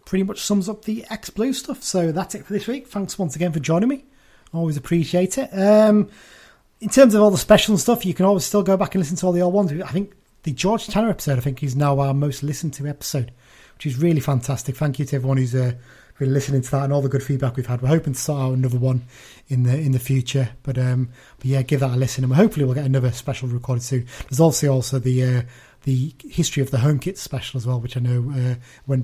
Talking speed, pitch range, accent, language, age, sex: 260 wpm, 130-175 Hz, British, English, 30-49, male